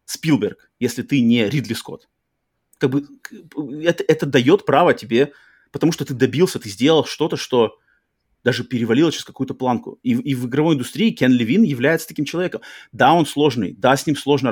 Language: Russian